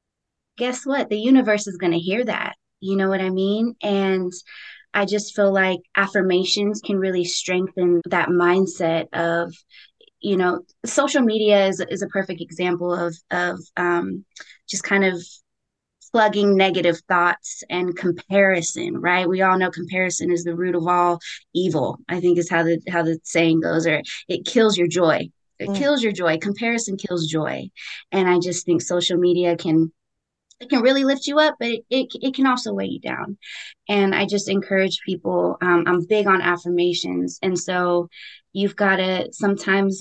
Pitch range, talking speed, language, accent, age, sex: 175-205 Hz, 175 wpm, English, American, 20-39, female